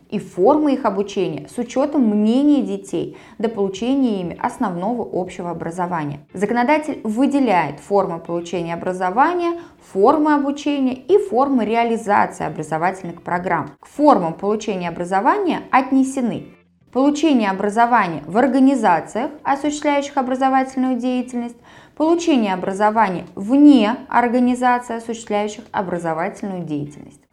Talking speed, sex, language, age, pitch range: 100 wpm, female, Russian, 20-39, 185-275 Hz